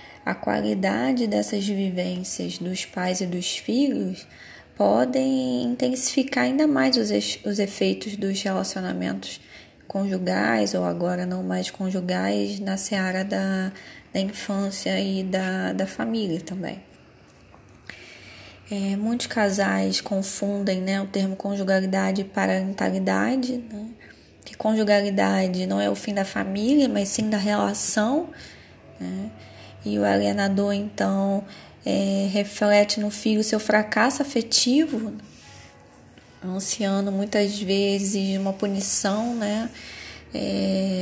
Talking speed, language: 110 wpm, Portuguese